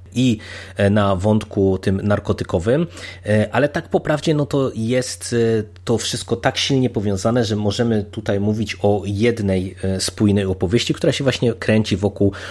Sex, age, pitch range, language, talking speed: male, 30-49, 100-110 Hz, Polish, 140 wpm